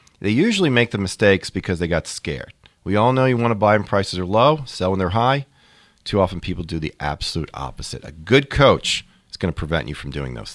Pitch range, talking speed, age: 95-140 Hz, 240 wpm, 40-59